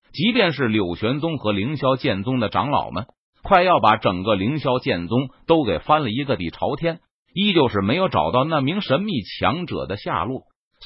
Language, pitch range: Chinese, 110-165 Hz